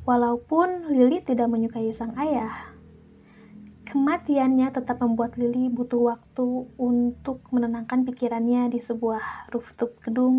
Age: 20-39